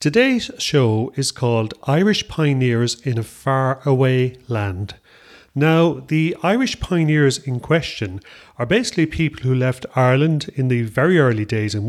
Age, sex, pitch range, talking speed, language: 30-49, male, 115-155 Hz, 145 wpm, English